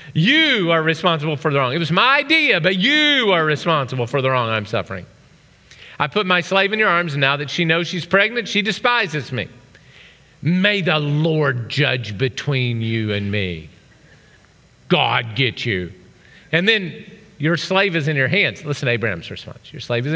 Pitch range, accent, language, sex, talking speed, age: 125-180 Hz, American, English, male, 185 wpm, 40-59